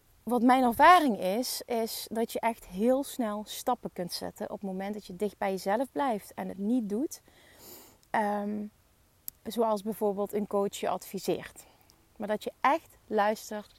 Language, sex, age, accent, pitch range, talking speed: Dutch, female, 30-49, Dutch, 205-255 Hz, 160 wpm